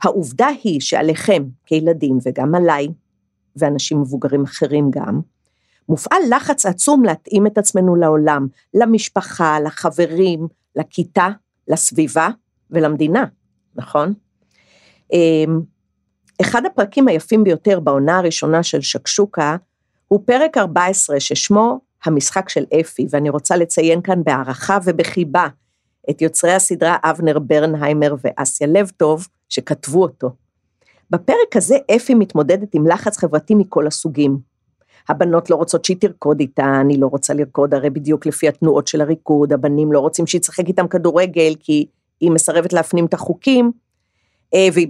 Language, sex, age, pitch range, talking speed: Hebrew, female, 50-69, 150-180 Hz, 125 wpm